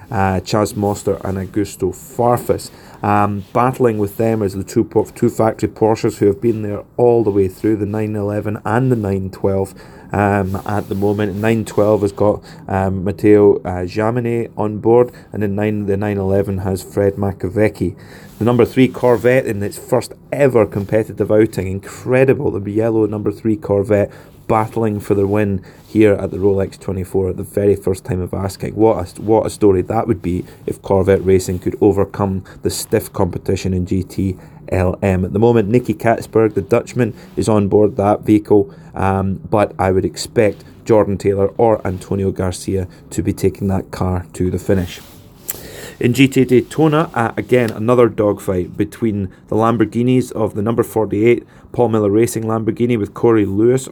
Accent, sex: British, male